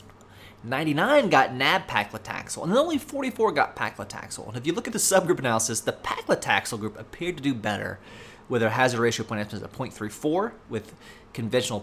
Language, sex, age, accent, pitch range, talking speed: English, male, 30-49, American, 105-140 Hz, 165 wpm